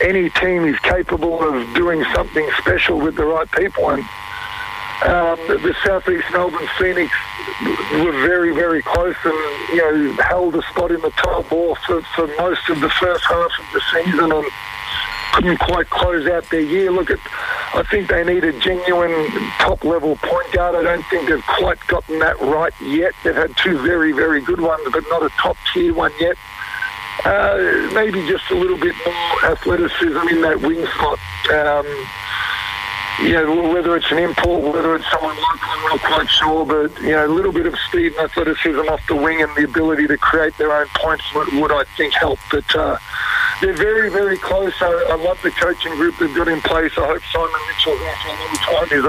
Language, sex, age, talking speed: English, male, 50-69, 195 wpm